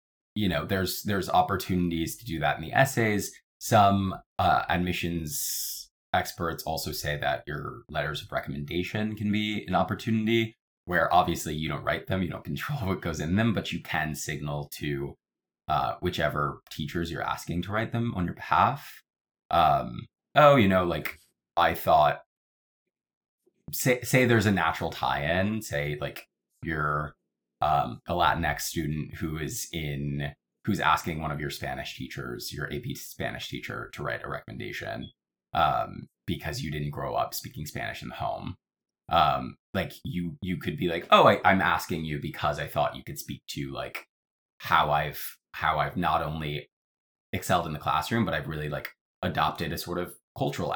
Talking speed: 170 wpm